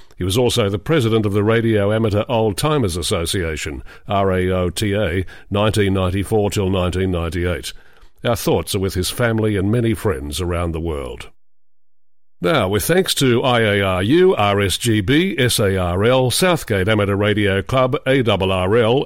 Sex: male